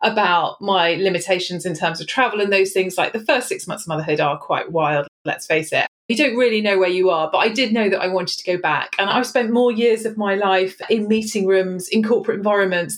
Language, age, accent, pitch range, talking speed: English, 30-49, British, 180-220 Hz, 250 wpm